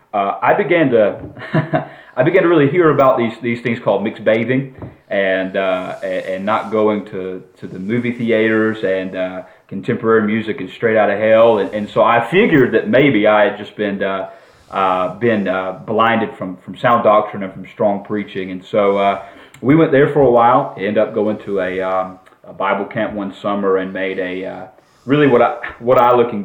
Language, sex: English, male